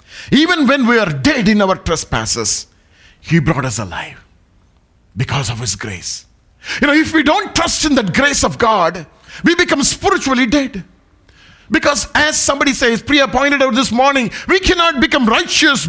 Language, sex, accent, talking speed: English, male, Indian, 165 wpm